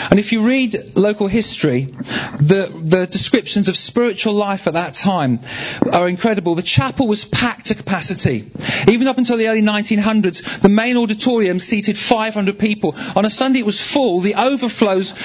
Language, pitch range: English, 170-220 Hz